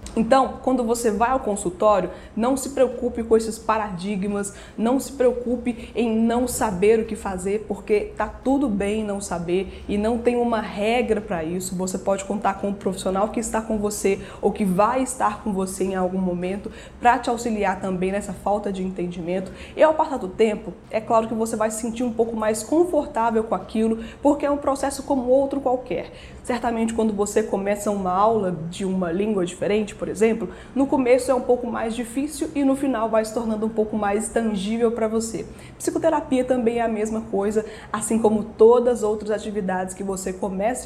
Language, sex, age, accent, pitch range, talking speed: Portuguese, female, 20-39, Brazilian, 200-245 Hz, 195 wpm